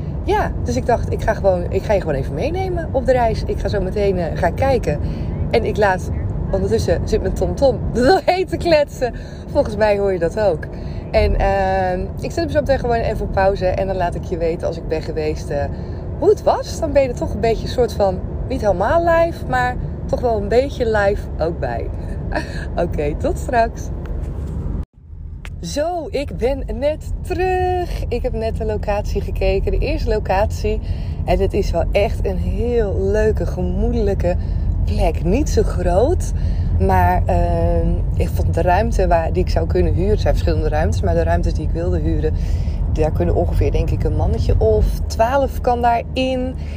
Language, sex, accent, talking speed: Dutch, female, Dutch, 190 wpm